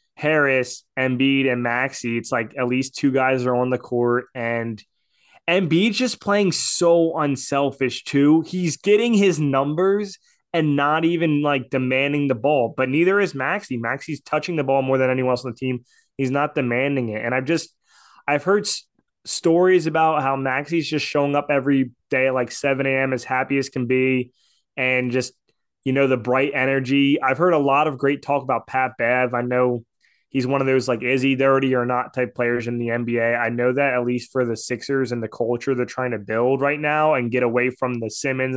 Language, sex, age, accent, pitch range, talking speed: English, male, 20-39, American, 125-150 Hz, 205 wpm